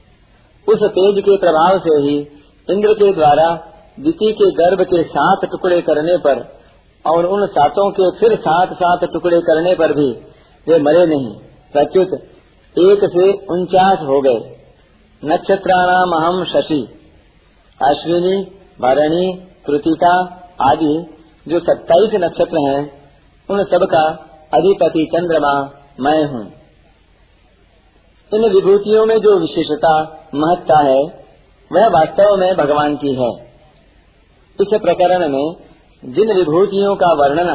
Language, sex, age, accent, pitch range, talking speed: Hindi, male, 50-69, native, 150-190 Hz, 120 wpm